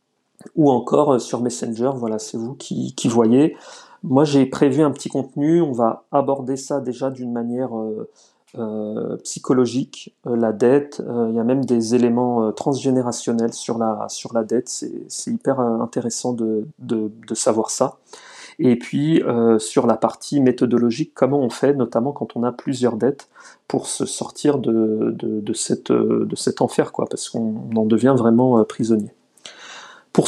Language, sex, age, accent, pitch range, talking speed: French, male, 40-59, French, 115-140 Hz, 165 wpm